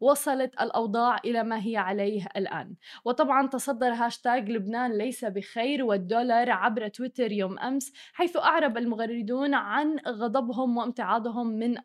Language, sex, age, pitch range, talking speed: Arabic, female, 20-39, 210-240 Hz, 125 wpm